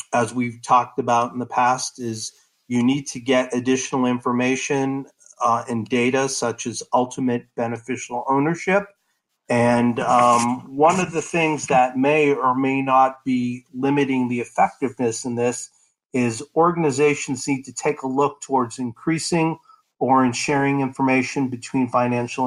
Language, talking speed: English, 145 wpm